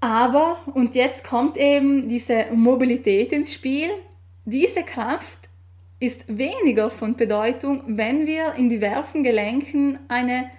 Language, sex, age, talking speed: German, female, 10-29, 120 wpm